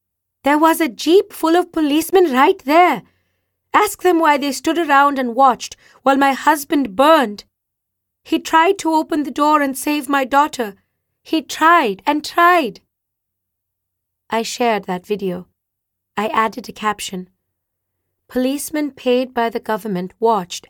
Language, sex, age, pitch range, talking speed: English, female, 30-49, 170-255 Hz, 140 wpm